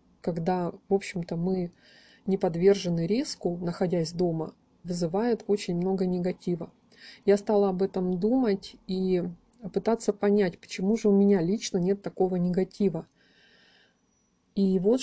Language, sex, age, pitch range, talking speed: Russian, female, 30-49, 175-210 Hz, 125 wpm